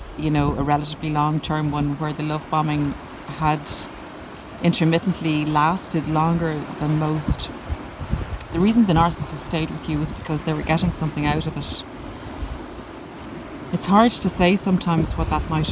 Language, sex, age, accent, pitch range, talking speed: English, female, 30-49, Irish, 150-170 Hz, 155 wpm